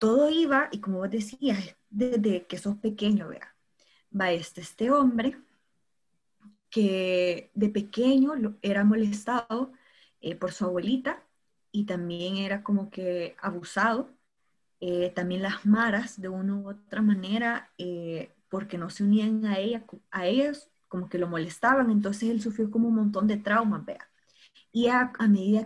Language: Spanish